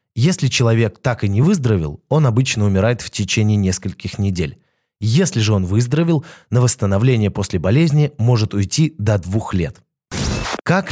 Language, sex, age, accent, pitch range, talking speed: Russian, male, 20-39, native, 105-135 Hz, 150 wpm